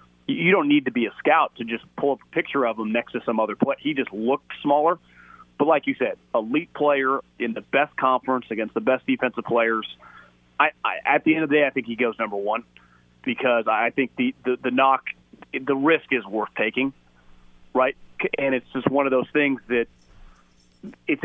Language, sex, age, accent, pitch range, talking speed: English, male, 30-49, American, 115-140 Hz, 210 wpm